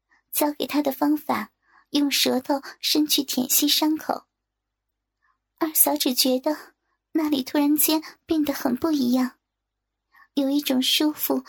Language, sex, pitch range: Chinese, male, 270-310 Hz